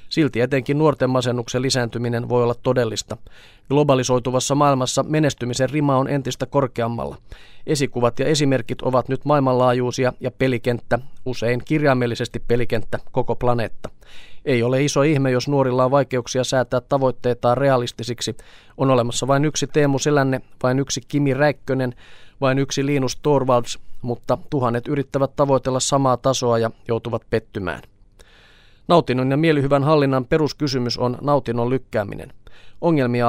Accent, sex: native, male